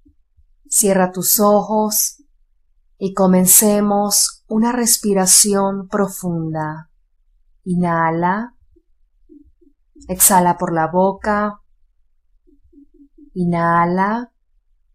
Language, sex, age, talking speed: Spanish, female, 30-49, 55 wpm